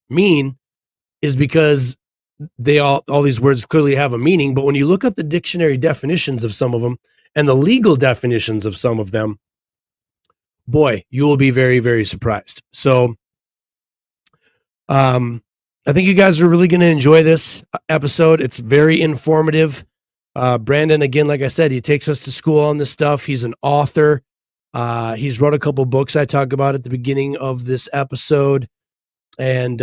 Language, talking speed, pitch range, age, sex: English, 175 wpm, 125-155 Hz, 30-49, male